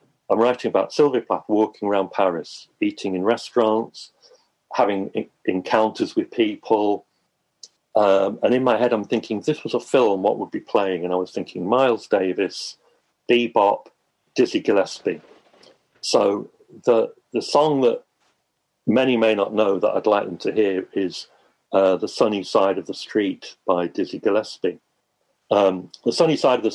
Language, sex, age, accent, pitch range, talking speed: English, male, 50-69, British, 100-145 Hz, 160 wpm